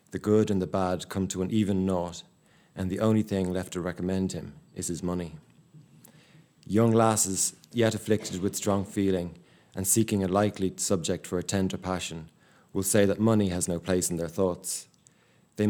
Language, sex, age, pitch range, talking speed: English, male, 30-49, 90-105 Hz, 185 wpm